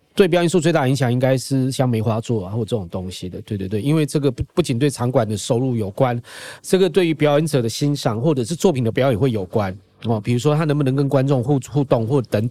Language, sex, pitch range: Chinese, male, 115-155 Hz